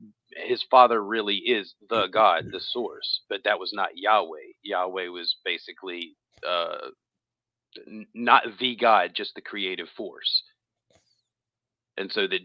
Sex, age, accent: male, 40-59, American